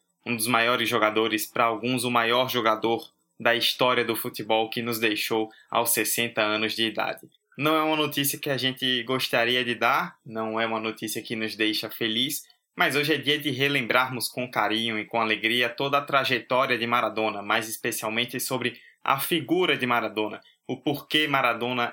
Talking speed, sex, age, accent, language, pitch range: 180 wpm, male, 20-39, Brazilian, Portuguese, 110-125 Hz